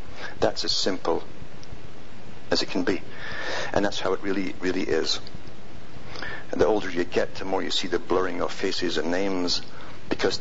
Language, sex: English, male